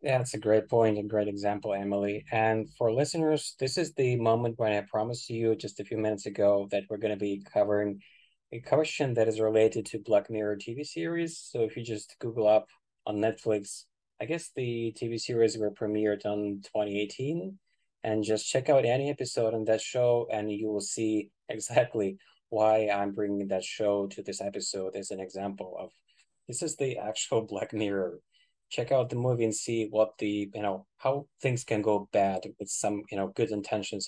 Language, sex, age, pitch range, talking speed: English, male, 20-39, 105-125 Hz, 195 wpm